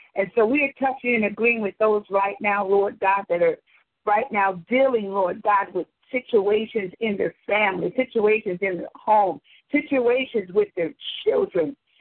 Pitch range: 195-220 Hz